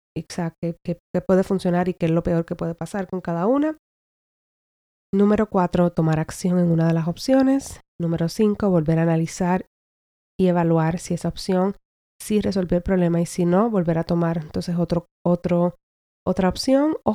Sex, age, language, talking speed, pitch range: female, 20-39, Spanish, 165 wpm, 170-190 Hz